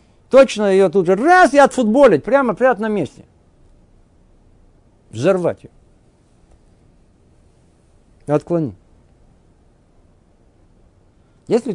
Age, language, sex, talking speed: 50-69, Russian, male, 75 wpm